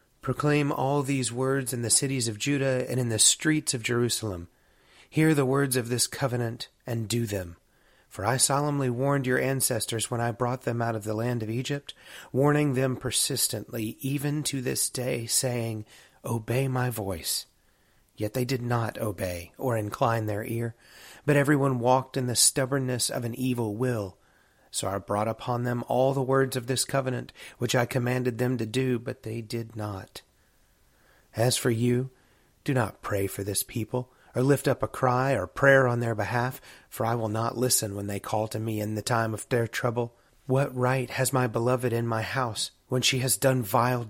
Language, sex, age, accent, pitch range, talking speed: English, male, 30-49, American, 115-130 Hz, 190 wpm